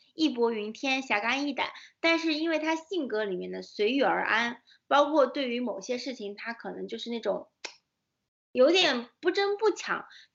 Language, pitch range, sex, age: Chinese, 225-300 Hz, female, 20-39